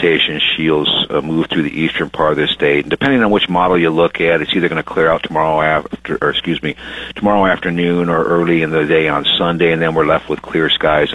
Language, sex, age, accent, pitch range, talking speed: English, male, 50-69, American, 75-85 Hz, 240 wpm